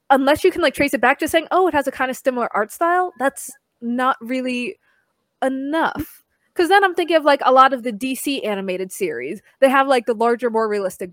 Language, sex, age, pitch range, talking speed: English, female, 20-39, 200-265 Hz, 225 wpm